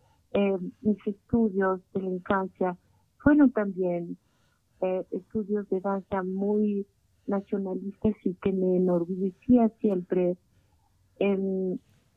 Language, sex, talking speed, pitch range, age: Spanish, female, 105 wpm, 175-210 Hz, 50-69